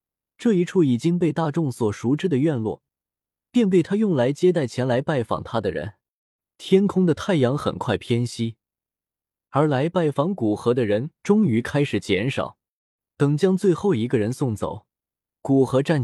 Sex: male